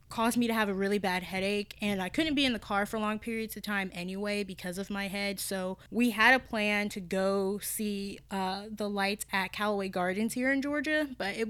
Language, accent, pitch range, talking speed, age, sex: English, American, 195-230 Hz, 230 wpm, 10-29, female